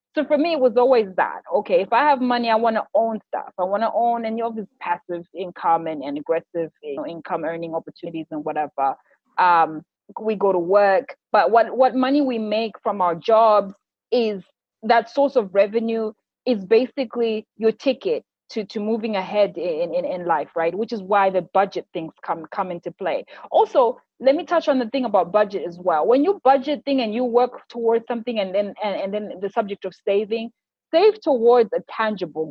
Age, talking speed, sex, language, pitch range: 20-39, 205 wpm, female, English, 205-295 Hz